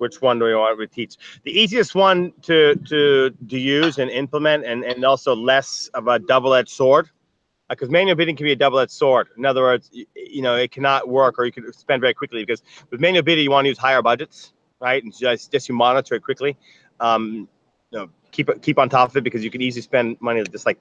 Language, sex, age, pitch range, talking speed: English, male, 30-49, 115-145 Hz, 240 wpm